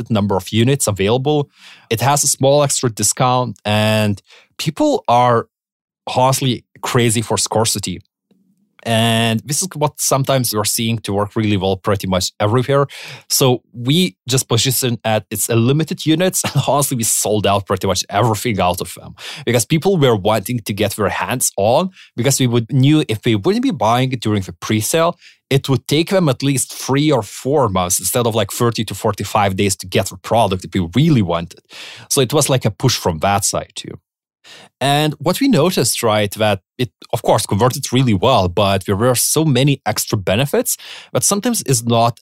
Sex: male